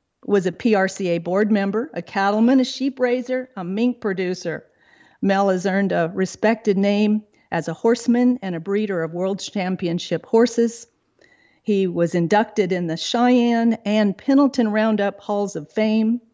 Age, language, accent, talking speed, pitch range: 40-59, English, American, 150 wpm, 190-230 Hz